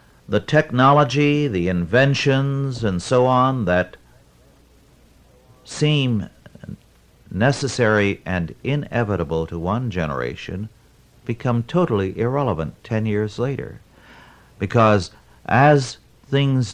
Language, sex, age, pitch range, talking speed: English, male, 60-79, 90-130 Hz, 85 wpm